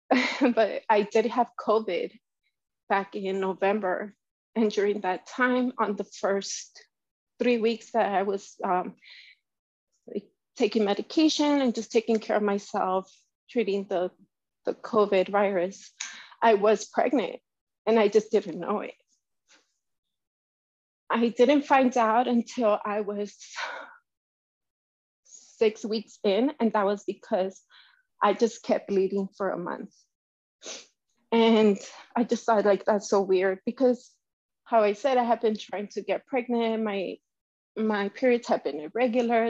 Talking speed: 135 wpm